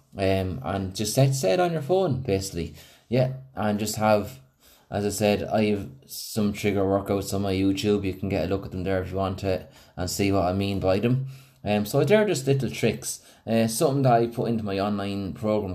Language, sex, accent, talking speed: English, male, Irish, 215 wpm